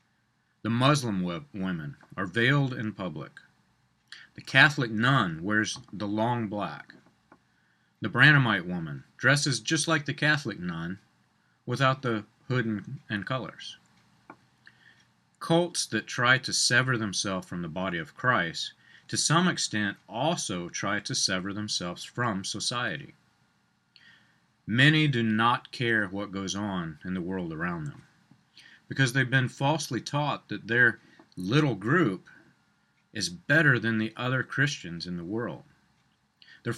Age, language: 40-59, English